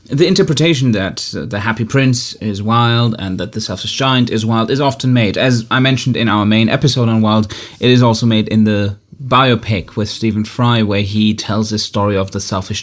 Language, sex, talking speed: English, male, 210 wpm